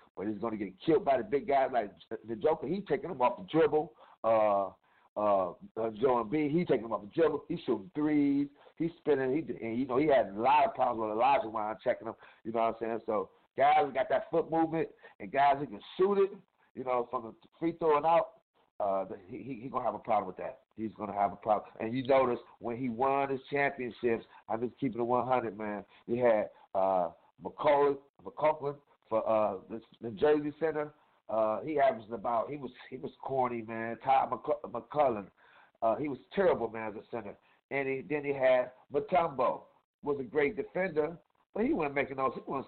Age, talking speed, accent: 50-69, 215 wpm, American